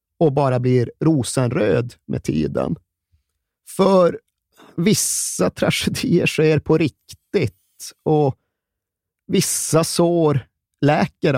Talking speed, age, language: 85 wpm, 30-49, Swedish